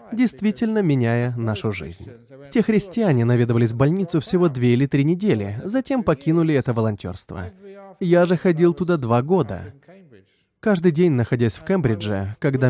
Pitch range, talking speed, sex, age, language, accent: 120-180 Hz, 140 wpm, male, 20-39, Russian, native